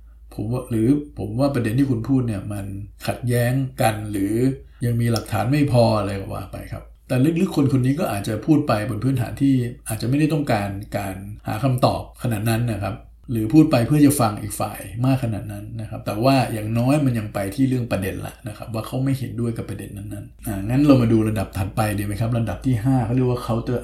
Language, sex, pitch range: Thai, male, 105-130 Hz